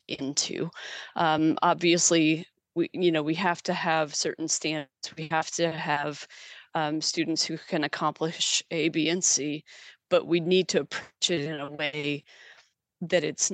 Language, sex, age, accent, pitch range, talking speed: English, female, 30-49, American, 160-185 Hz, 160 wpm